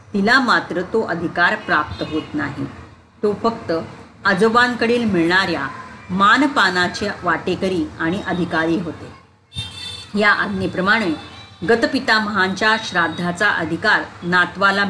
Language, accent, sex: Marathi, native, female